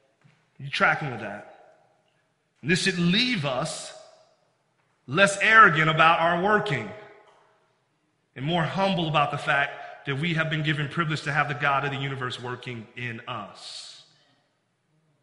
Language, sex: English, male